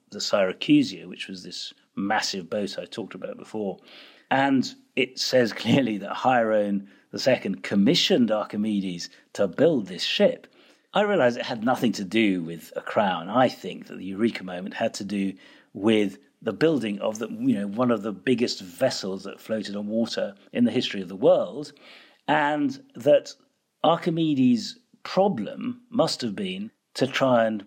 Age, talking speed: 50-69, 165 wpm